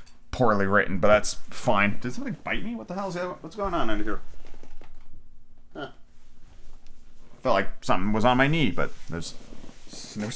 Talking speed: 175 wpm